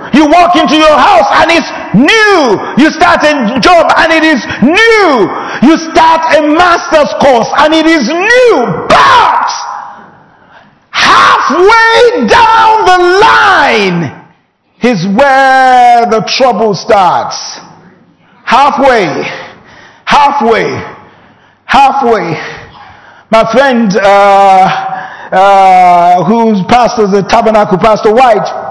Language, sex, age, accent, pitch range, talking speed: English, male, 50-69, Nigerian, 255-335 Hz, 100 wpm